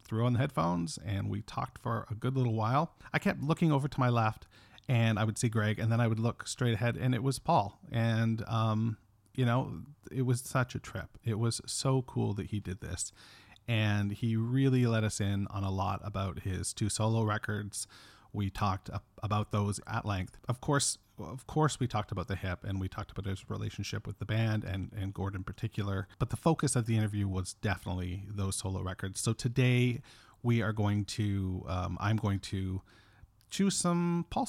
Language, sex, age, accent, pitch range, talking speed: English, male, 40-59, American, 100-120 Hz, 205 wpm